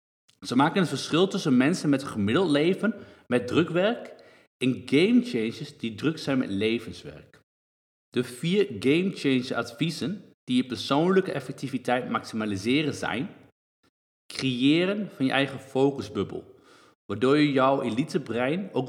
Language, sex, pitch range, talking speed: Dutch, male, 115-150 Hz, 120 wpm